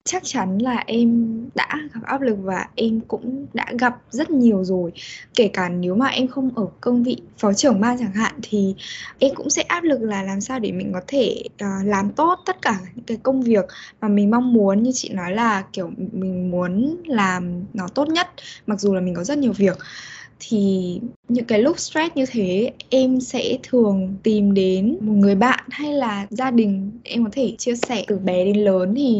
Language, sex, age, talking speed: Vietnamese, female, 10-29, 210 wpm